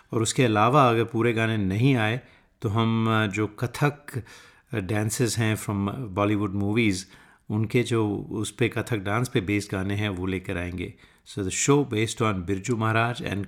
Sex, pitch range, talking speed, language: male, 100-115 Hz, 170 wpm, Hindi